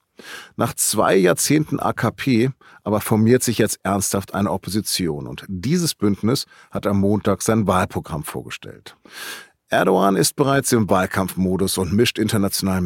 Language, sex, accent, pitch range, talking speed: German, male, German, 100-130 Hz, 130 wpm